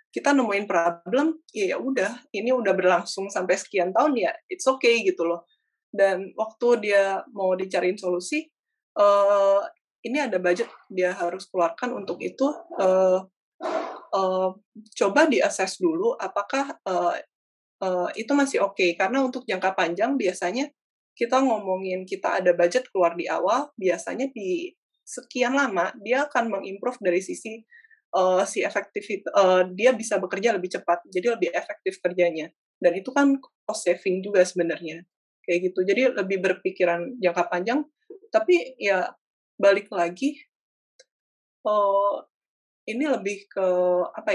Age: 20-39